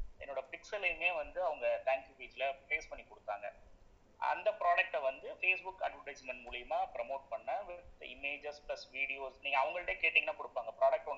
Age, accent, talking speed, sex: 30-49, Indian, 75 wpm, male